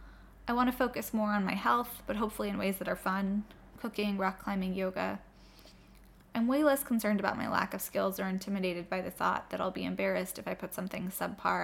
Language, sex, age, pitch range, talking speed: English, female, 10-29, 185-210 Hz, 215 wpm